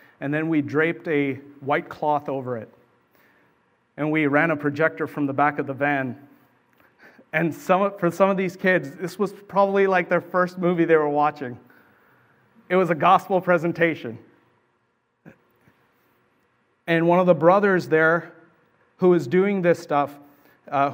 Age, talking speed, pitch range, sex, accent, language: 40-59, 150 wpm, 140-170 Hz, male, American, English